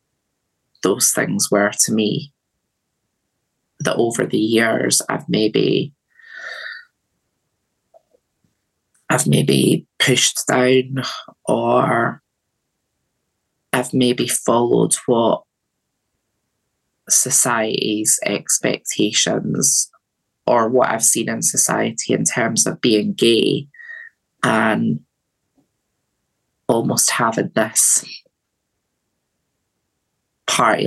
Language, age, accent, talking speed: English, 20-39, British, 75 wpm